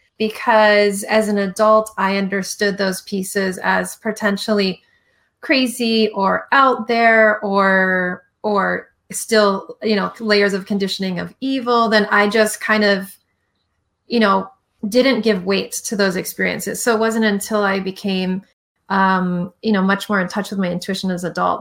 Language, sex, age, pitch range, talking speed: English, female, 30-49, 190-215 Hz, 155 wpm